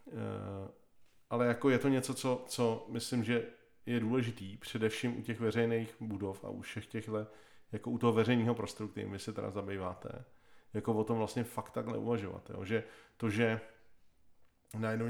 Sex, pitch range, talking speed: male, 105-120 Hz, 170 wpm